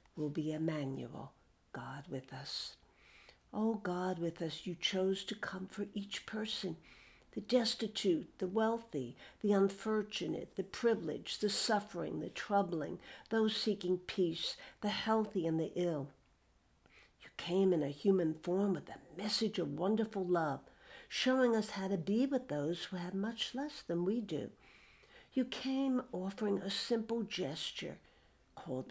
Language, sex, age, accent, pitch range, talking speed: English, female, 60-79, American, 155-210 Hz, 145 wpm